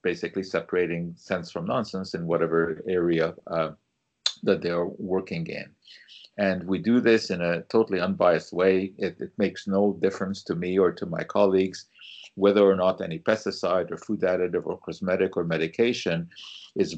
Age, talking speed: 50-69, 165 wpm